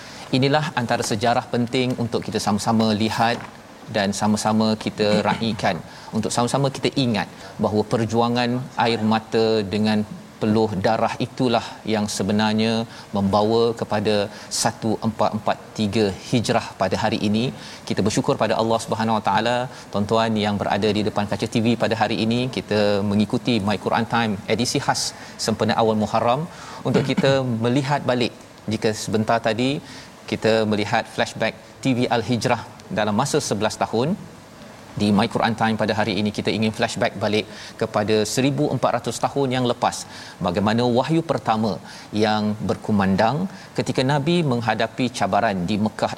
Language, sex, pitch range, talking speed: Malayalam, male, 105-120 Hz, 135 wpm